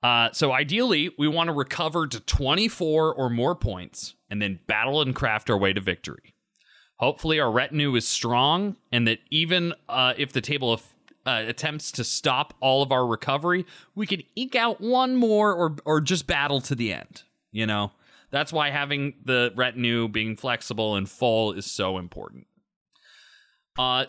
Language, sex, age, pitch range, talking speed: English, male, 30-49, 120-170 Hz, 175 wpm